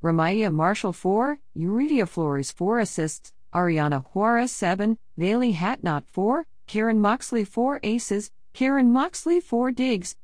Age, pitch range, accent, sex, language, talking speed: 50-69, 160-220 Hz, American, female, English, 125 wpm